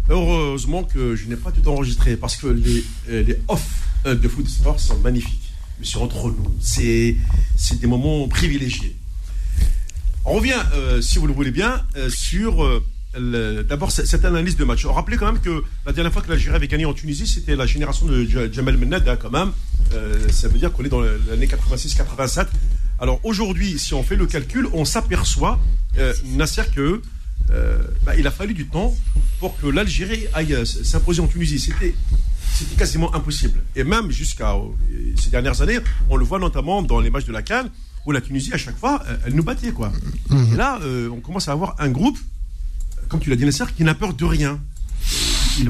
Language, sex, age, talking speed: French, male, 50-69, 200 wpm